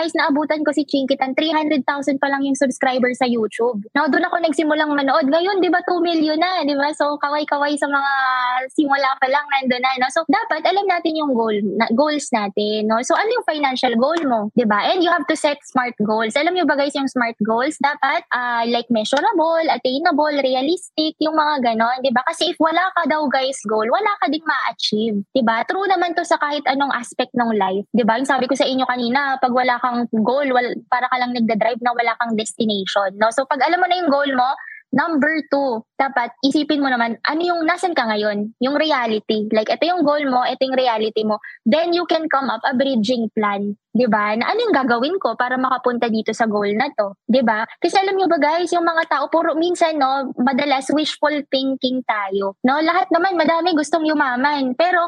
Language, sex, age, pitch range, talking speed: English, female, 20-39, 240-310 Hz, 210 wpm